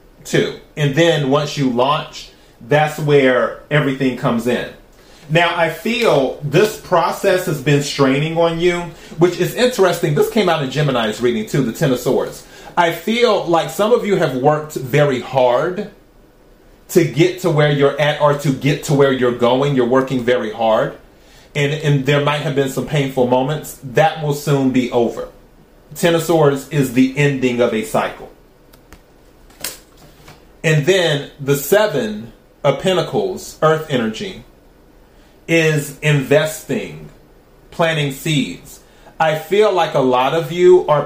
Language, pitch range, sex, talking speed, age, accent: English, 130-160 Hz, male, 155 wpm, 30-49, American